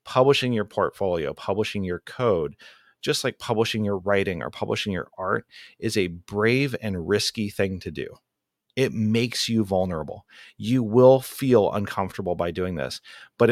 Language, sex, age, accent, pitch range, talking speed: English, male, 30-49, American, 90-115 Hz, 155 wpm